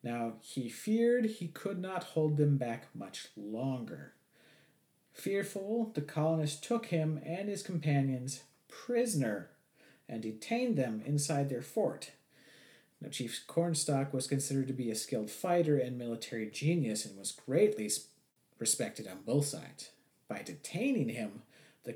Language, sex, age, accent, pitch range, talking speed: English, male, 40-59, American, 125-155 Hz, 135 wpm